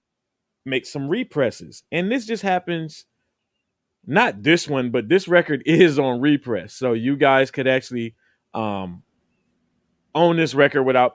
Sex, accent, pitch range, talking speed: male, American, 115-155 Hz, 140 wpm